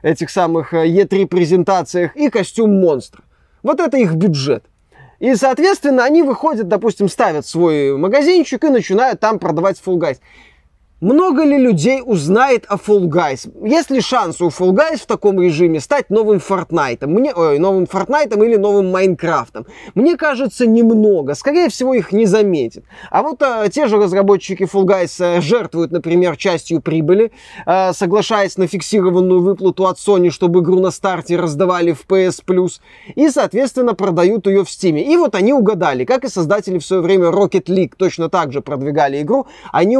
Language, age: Russian, 20-39